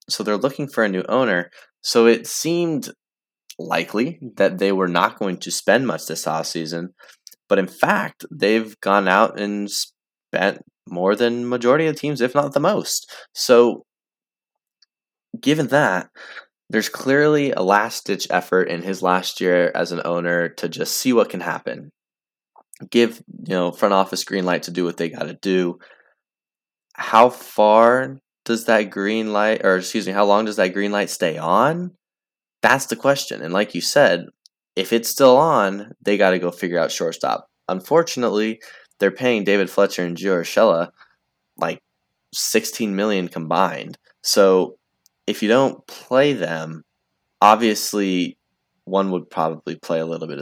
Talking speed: 160 wpm